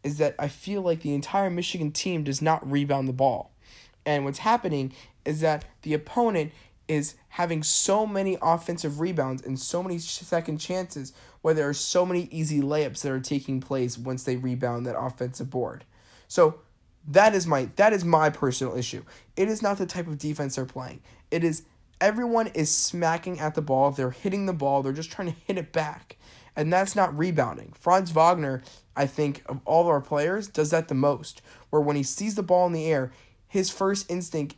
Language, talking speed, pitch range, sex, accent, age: English, 200 wpm, 140-180 Hz, male, American, 10-29